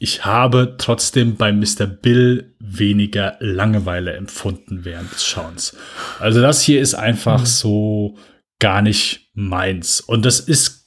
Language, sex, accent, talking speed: German, male, German, 135 wpm